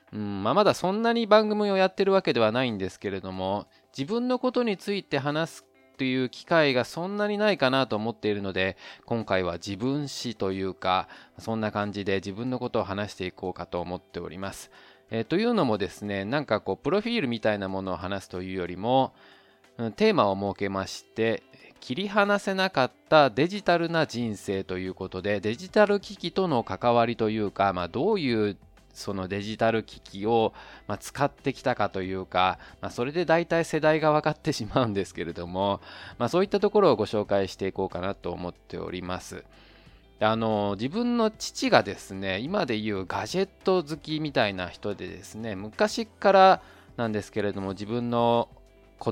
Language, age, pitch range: Japanese, 20-39, 100-155 Hz